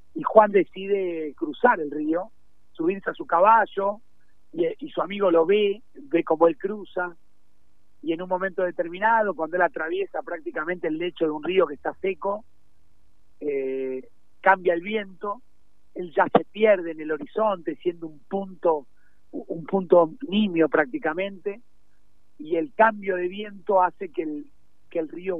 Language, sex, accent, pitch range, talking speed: Spanish, male, Argentinian, 155-195 Hz, 155 wpm